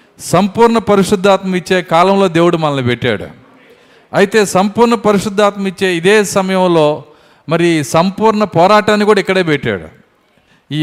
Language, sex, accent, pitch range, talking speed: Telugu, male, native, 160-195 Hz, 110 wpm